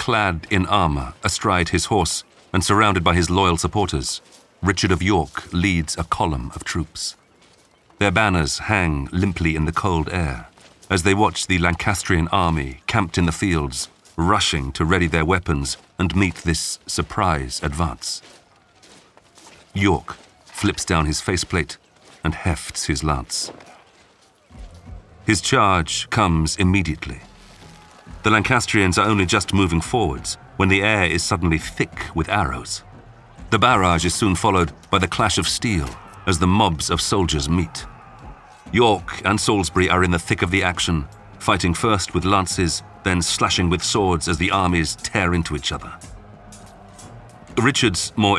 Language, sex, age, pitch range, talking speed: English, male, 40-59, 85-100 Hz, 150 wpm